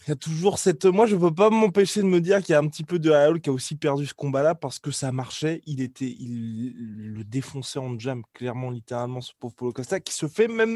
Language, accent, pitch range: French, French, 135-180 Hz